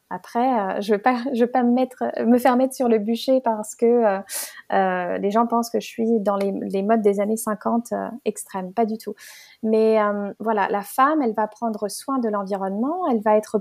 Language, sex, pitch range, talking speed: French, female, 215-265 Hz, 235 wpm